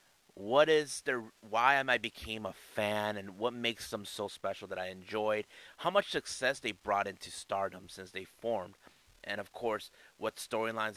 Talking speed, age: 175 wpm, 30-49